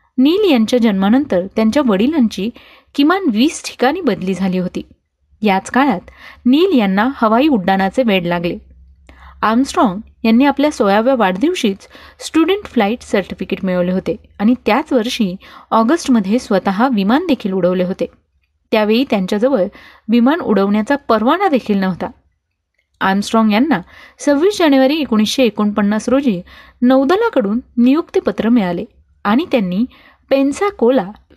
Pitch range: 195-270 Hz